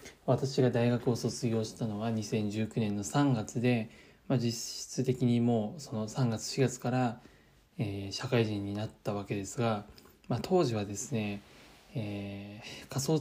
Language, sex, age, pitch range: Japanese, male, 20-39, 105-135 Hz